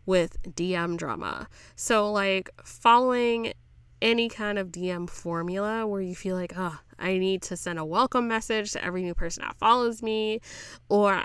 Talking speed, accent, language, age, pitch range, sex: 165 wpm, American, English, 10-29, 175-215 Hz, female